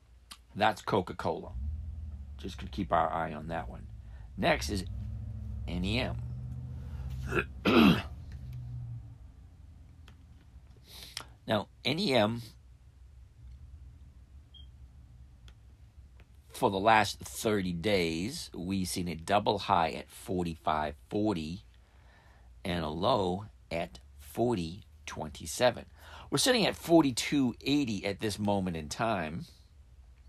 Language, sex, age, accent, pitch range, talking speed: English, male, 50-69, American, 75-105 Hz, 80 wpm